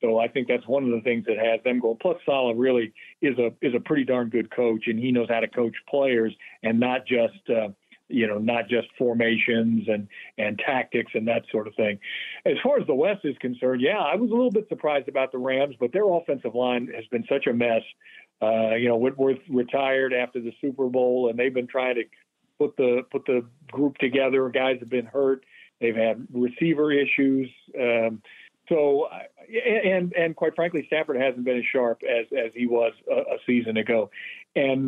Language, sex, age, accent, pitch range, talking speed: English, male, 50-69, American, 120-140 Hz, 210 wpm